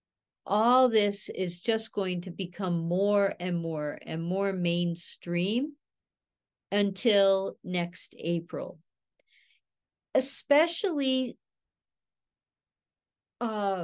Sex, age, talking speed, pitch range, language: female, 50-69, 80 wpm, 170-215 Hz, English